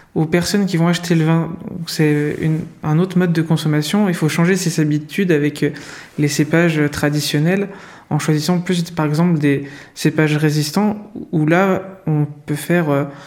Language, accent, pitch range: French, French, 150-175 Hz